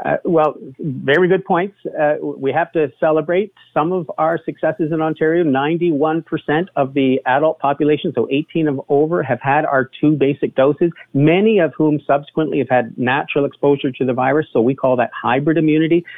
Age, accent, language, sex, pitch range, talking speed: 50-69, American, English, male, 130-155 Hz, 180 wpm